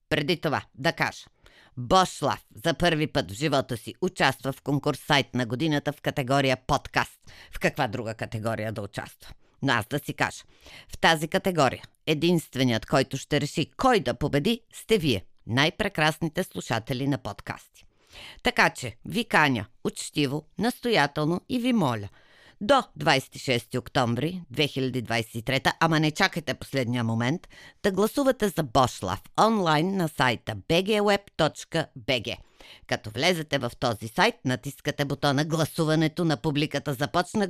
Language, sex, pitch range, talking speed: Bulgarian, female, 130-175 Hz, 135 wpm